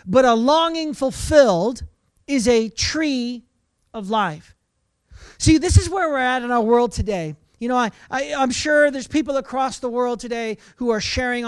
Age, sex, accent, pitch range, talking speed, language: 40-59, male, American, 220-275 Hz, 180 wpm, English